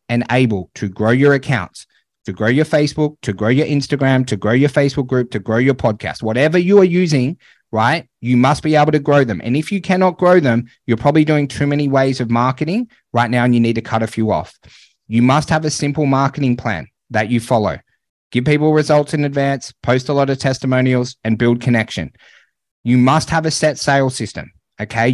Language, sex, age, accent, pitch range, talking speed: English, male, 30-49, Australian, 120-145 Hz, 215 wpm